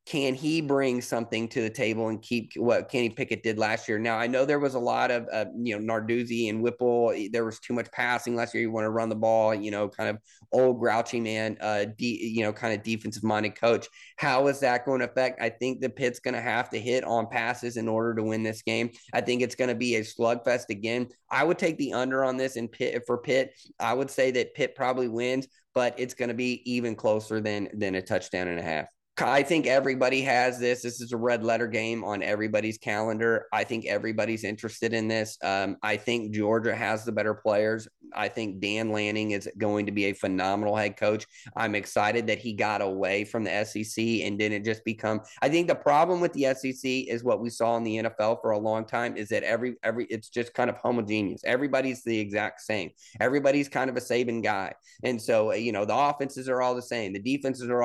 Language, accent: English, American